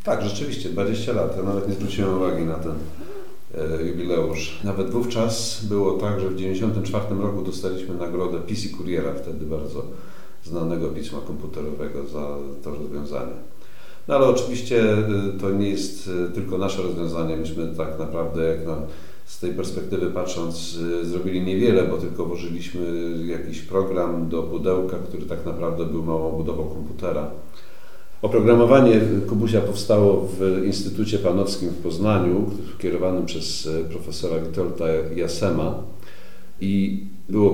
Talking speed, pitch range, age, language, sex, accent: 130 wpm, 80-100 Hz, 40-59, Polish, male, native